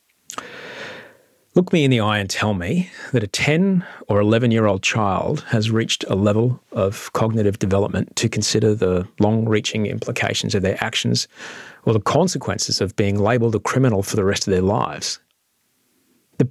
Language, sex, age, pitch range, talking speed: English, male, 40-59, 105-135 Hz, 160 wpm